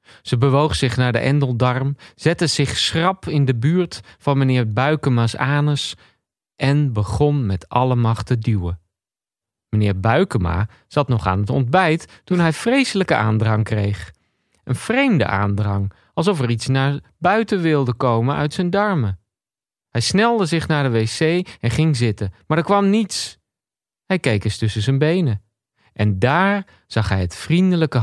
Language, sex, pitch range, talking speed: Dutch, male, 110-160 Hz, 155 wpm